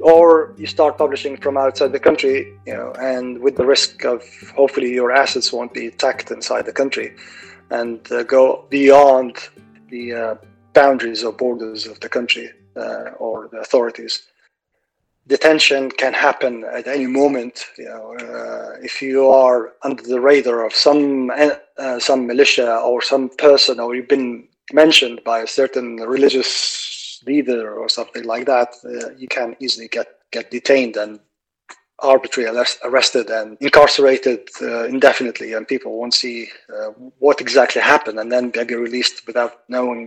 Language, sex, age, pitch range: English, male, 30-49, 120-140 Hz